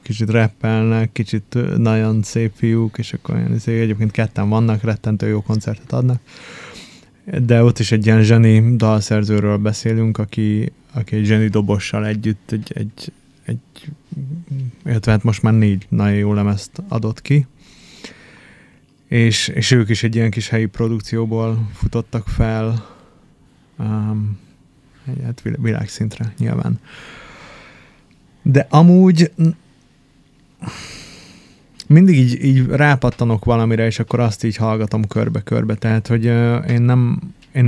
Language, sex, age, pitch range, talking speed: Hungarian, male, 20-39, 110-130 Hz, 125 wpm